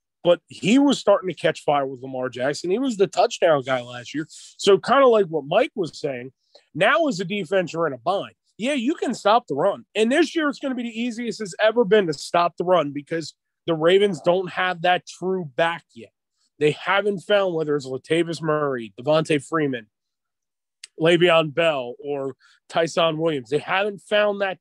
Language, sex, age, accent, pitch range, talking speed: English, male, 30-49, American, 155-205 Hz, 200 wpm